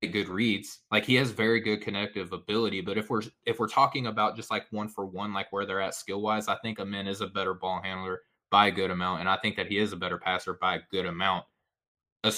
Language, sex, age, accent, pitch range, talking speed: English, male, 20-39, American, 100-115 Hz, 260 wpm